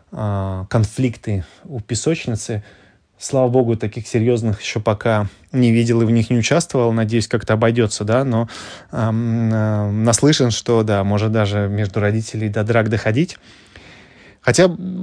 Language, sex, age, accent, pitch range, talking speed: Russian, male, 20-39, native, 105-125 Hz, 135 wpm